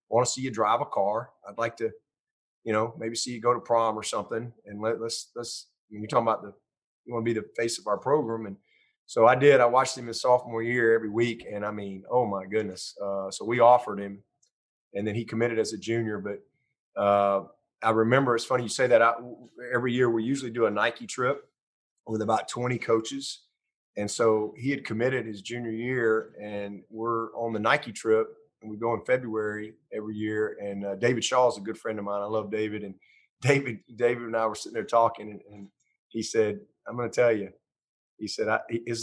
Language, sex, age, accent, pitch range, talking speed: English, male, 30-49, American, 110-120 Hz, 220 wpm